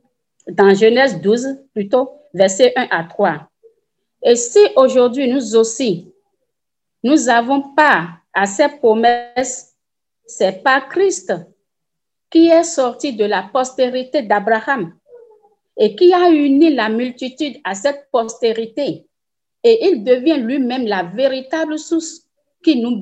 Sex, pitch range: female, 215-310 Hz